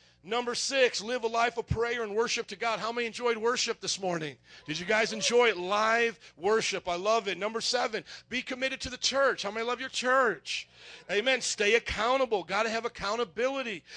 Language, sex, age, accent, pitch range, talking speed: English, male, 40-59, American, 205-255 Hz, 195 wpm